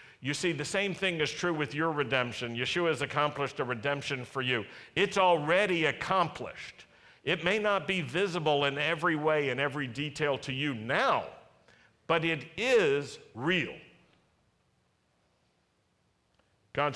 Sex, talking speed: male, 140 wpm